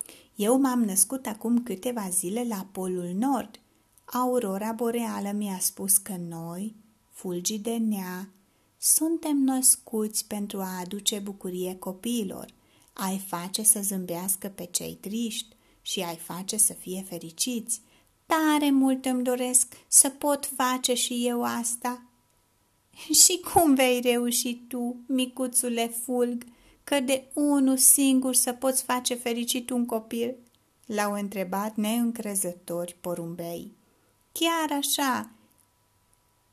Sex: female